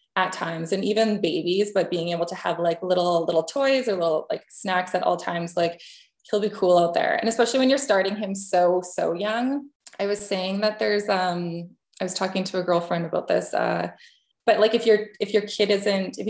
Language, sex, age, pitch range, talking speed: English, female, 20-39, 175-215 Hz, 230 wpm